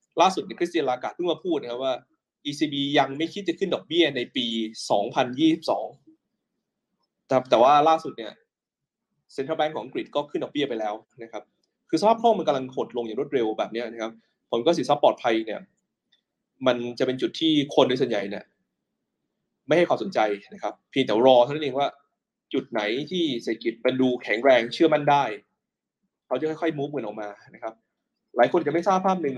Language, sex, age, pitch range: Thai, male, 20-39, 120-175 Hz